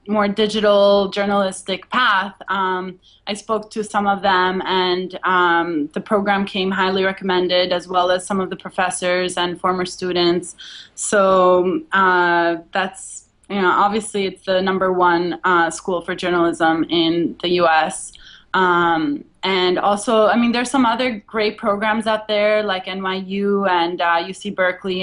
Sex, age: female, 20-39